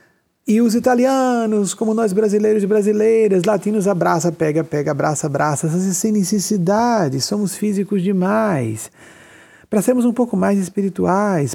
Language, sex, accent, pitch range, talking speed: Portuguese, male, Brazilian, 165-215 Hz, 130 wpm